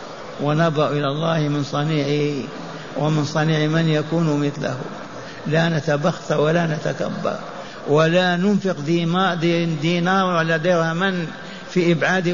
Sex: male